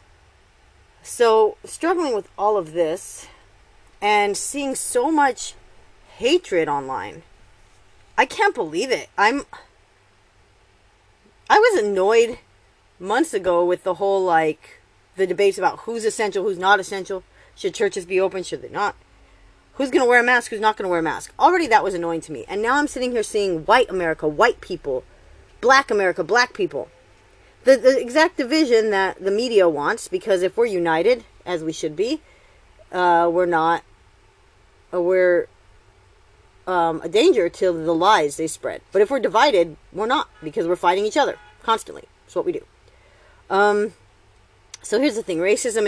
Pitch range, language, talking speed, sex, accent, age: 160-245 Hz, English, 160 wpm, female, American, 30-49